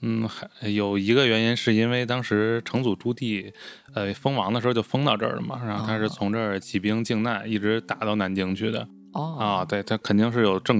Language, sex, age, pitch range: Chinese, male, 20-39, 100-115 Hz